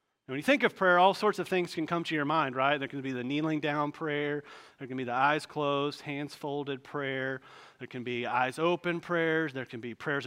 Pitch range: 145-190 Hz